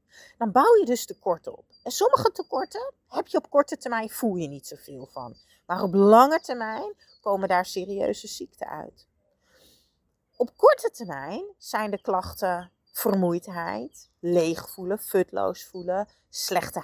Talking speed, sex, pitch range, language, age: 145 wpm, female, 180-280 Hz, Dutch, 40-59